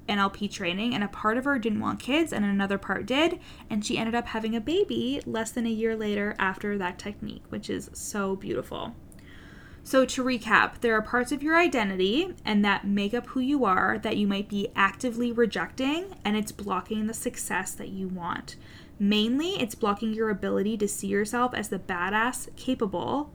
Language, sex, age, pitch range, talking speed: English, female, 10-29, 195-225 Hz, 195 wpm